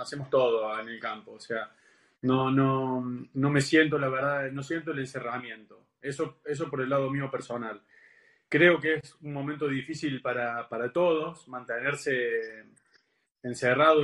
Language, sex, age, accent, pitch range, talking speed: Spanish, male, 20-39, Argentinian, 130-160 Hz, 155 wpm